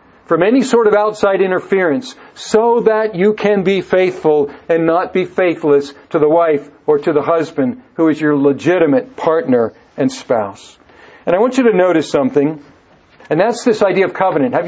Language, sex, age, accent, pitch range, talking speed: English, male, 50-69, American, 170-220 Hz, 180 wpm